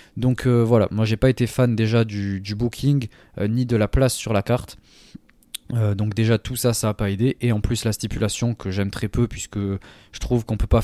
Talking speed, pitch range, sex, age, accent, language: 245 wpm, 100-120 Hz, male, 20-39, French, French